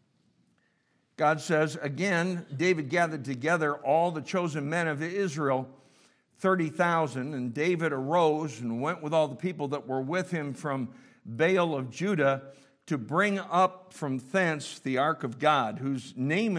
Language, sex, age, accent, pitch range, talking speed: English, male, 60-79, American, 140-175 Hz, 150 wpm